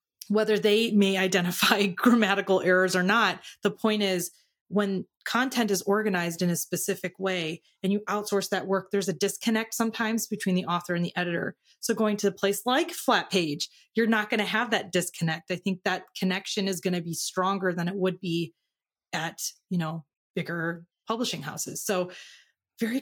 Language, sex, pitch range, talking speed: English, female, 185-230 Hz, 185 wpm